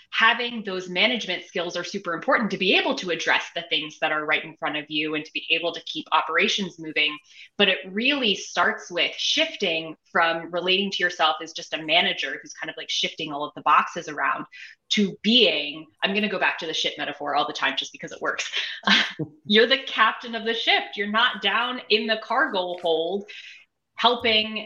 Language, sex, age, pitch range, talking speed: English, female, 20-39, 165-210 Hz, 205 wpm